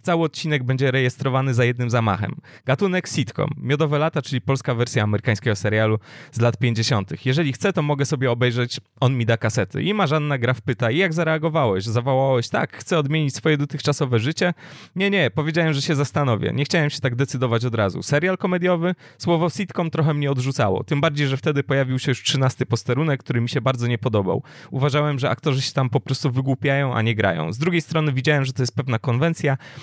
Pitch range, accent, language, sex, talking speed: 120-150 Hz, native, Polish, male, 195 wpm